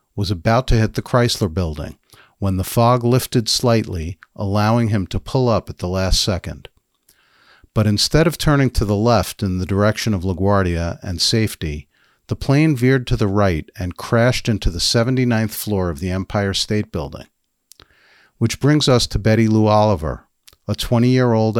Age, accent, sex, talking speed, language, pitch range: 50-69, American, male, 170 wpm, English, 95-120 Hz